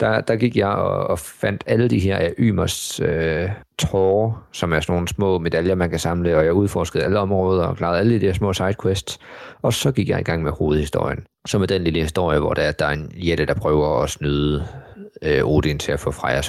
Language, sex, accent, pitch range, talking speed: Danish, male, native, 85-105 Hz, 235 wpm